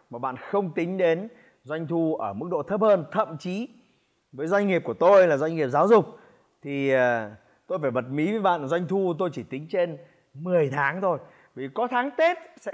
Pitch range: 150-210 Hz